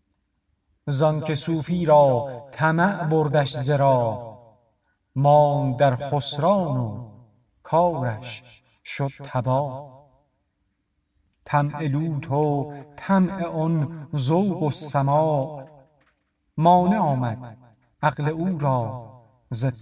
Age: 50-69